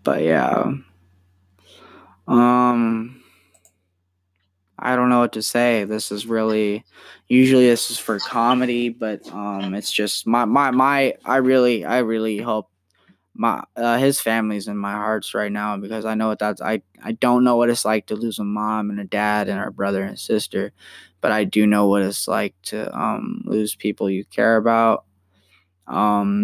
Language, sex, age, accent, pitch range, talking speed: English, male, 10-29, American, 100-115 Hz, 175 wpm